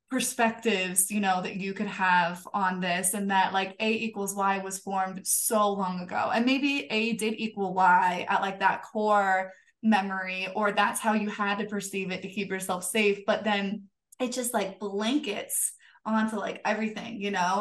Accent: American